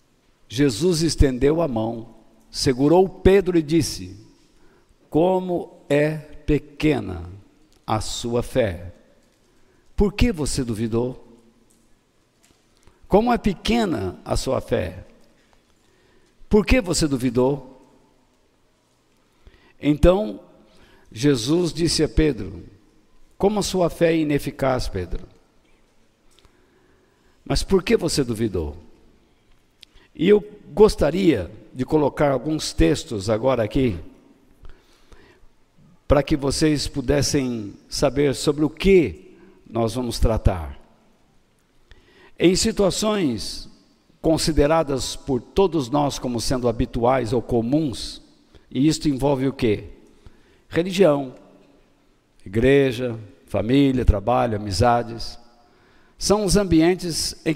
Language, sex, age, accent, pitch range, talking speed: Portuguese, male, 60-79, Brazilian, 115-165 Hz, 95 wpm